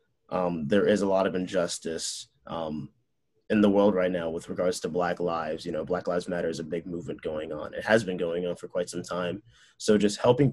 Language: English